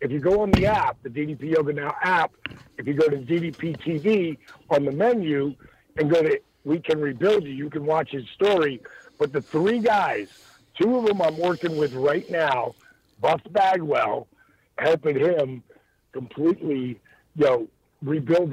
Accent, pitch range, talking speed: American, 140-180 Hz, 170 wpm